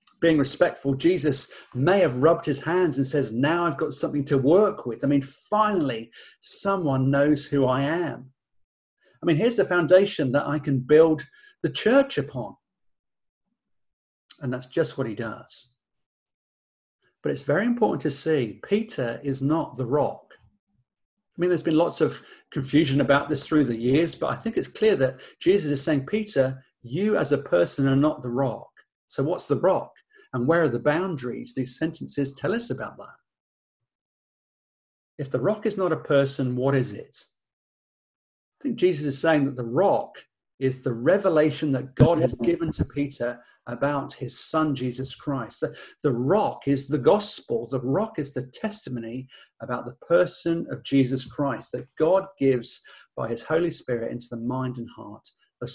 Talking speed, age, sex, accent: 175 wpm, 40-59, male, British